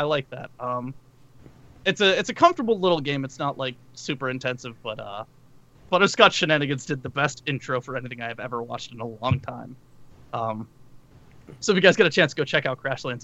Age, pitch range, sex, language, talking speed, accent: 20-39, 130-180 Hz, male, English, 210 wpm, American